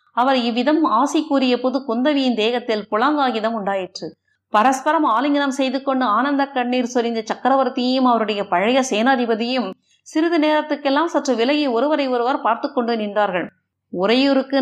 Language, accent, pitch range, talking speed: Tamil, native, 225-290 Hz, 125 wpm